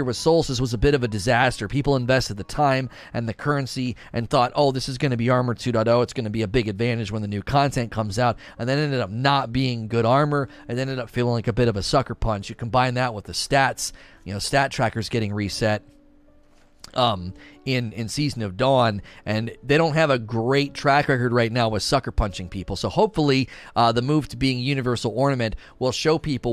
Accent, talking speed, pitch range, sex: American, 230 wpm, 110-140 Hz, male